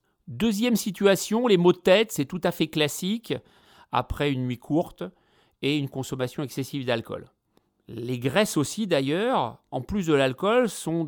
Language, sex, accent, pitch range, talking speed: French, male, French, 140-190 Hz, 155 wpm